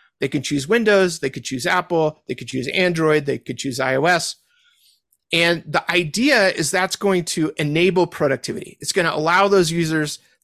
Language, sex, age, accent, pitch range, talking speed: English, male, 30-49, American, 140-185 Hz, 170 wpm